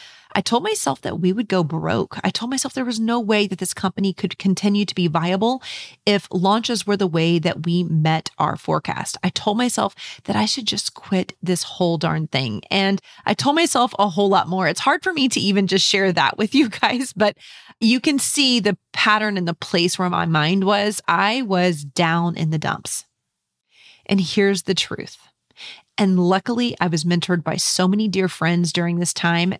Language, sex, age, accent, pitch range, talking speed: English, female, 30-49, American, 170-210 Hz, 205 wpm